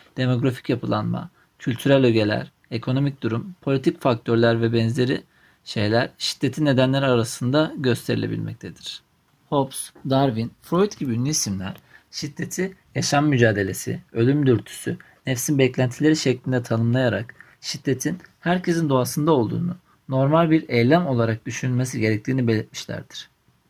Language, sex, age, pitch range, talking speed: Turkish, male, 40-59, 120-155 Hz, 105 wpm